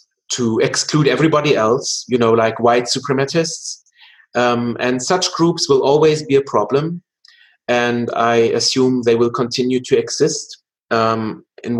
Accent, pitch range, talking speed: German, 115-145 Hz, 140 wpm